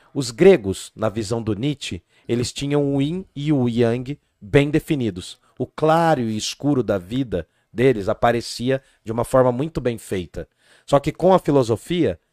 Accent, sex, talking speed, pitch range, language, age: Brazilian, male, 165 wpm, 115-140 Hz, Portuguese, 40-59